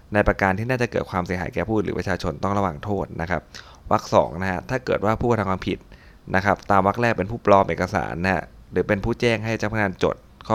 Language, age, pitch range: Thai, 20-39, 90-105 Hz